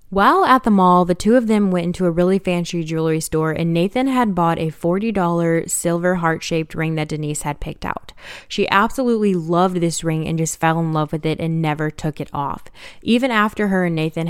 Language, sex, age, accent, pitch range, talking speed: English, female, 10-29, American, 160-200 Hz, 215 wpm